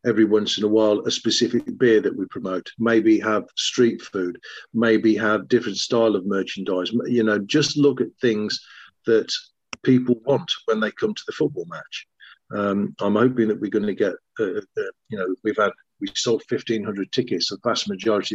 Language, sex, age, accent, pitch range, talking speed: English, male, 50-69, British, 100-120 Hz, 190 wpm